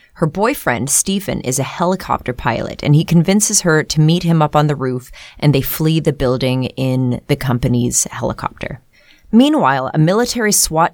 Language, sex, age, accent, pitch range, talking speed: English, female, 30-49, American, 135-170 Hz, 170 wpm